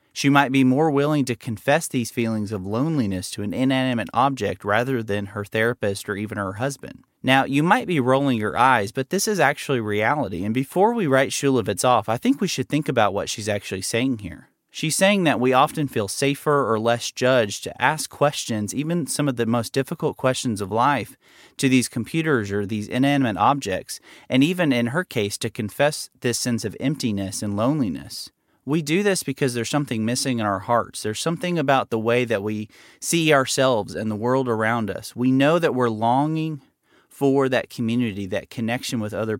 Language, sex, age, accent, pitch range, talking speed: English, male, 30-49, American, 110-140 Hz, 200 wpm